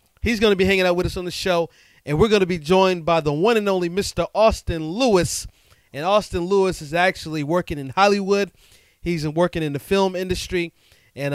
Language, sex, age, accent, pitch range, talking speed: English, male, 30-49, American, 150-195 Hz, 210 wpm